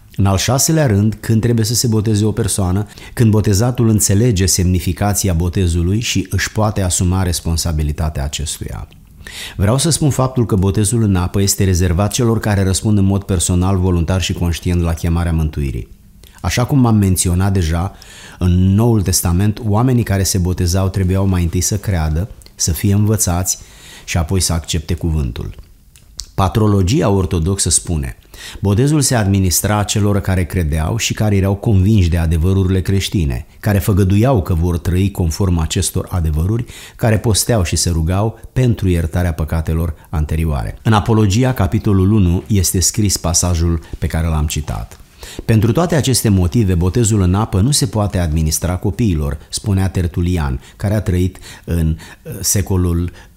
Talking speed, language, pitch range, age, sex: 150 wpm, Romanian, 90-105 Hz, 30-49, male